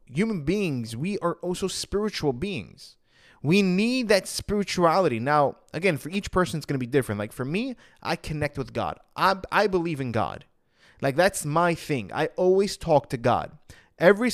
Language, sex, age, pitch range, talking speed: English, male, 30-49, 130-190 Hz, 180 wpm